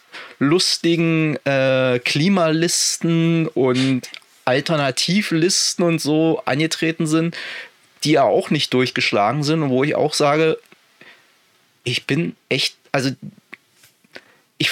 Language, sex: German, male